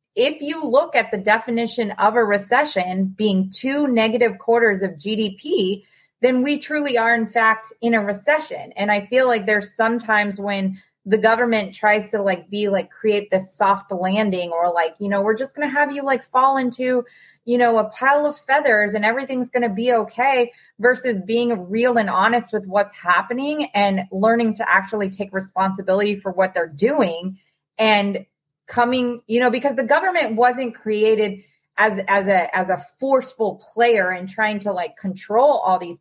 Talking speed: 180 wpm